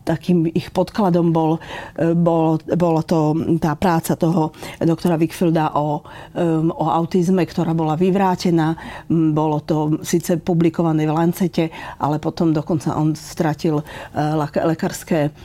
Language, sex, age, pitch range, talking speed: Slovak, female, 40-59, 165-195 Hz, 120 wpm